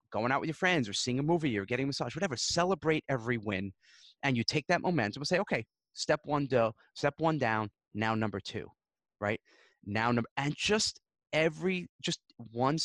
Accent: American